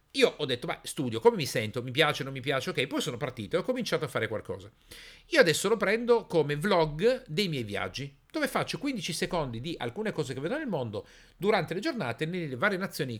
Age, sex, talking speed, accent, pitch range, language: 50-69, male, 220 wpm, native, 125-200 Hz, Italian